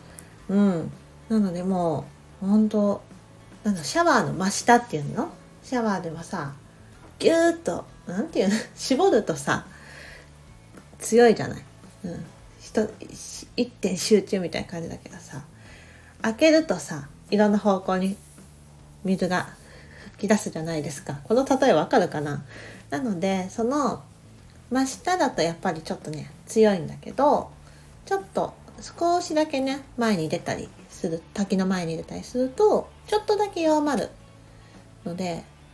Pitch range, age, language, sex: 160-240 Hz, 40-59, Japanese, female